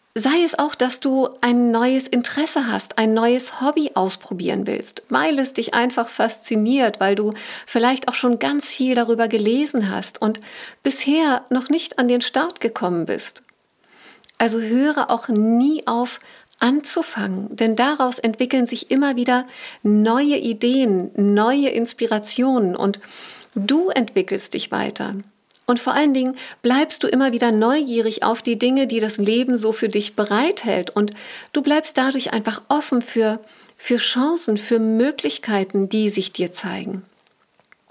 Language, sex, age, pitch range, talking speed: German, female, 50-69, 220-265 Hz, 145 wpm